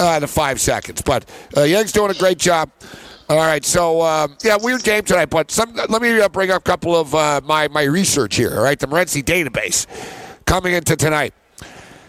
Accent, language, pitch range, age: American, English, 155-200 Hz, 50-69